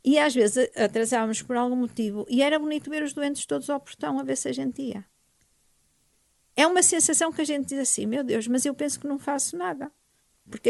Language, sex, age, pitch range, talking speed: Portuguese, female, 50-69, 220-285 Hz, 225 wpm